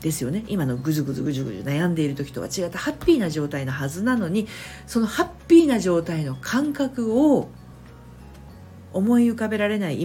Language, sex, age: Japanese, female, 50-69